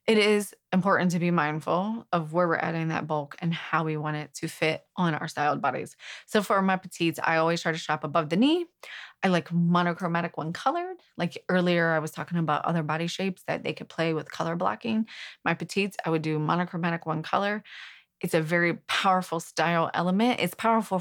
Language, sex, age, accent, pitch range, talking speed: English, female, 20-39, American, 160-200 Hz, 205 wpm